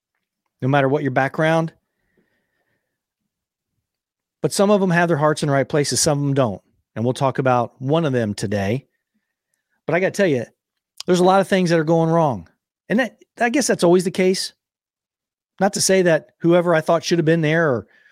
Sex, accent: male, American